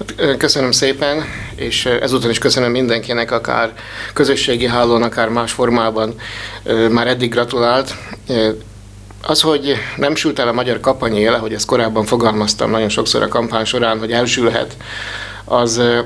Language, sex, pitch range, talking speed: Hungarian, male, 110-125 Hz, 135 wpm